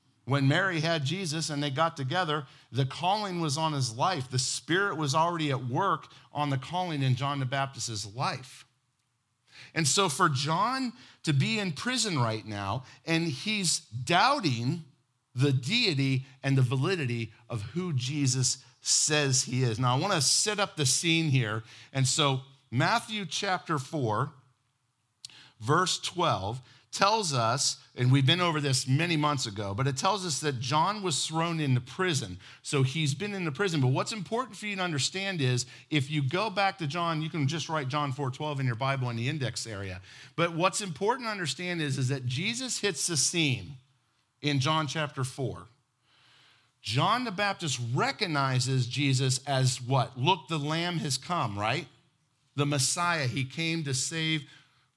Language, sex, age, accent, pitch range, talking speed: English, male, 50-69, American, 130-165 Hz, 170 wpm